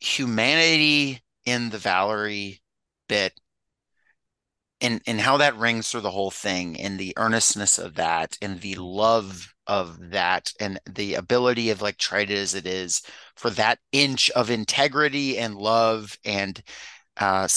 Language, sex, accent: English, male, American